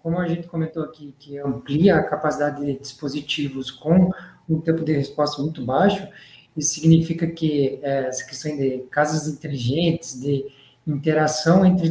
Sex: male